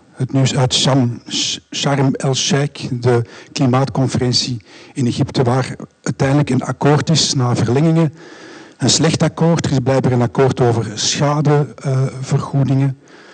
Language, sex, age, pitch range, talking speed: Dutch, male, 50-69, 120-140 Hz, 115 wpm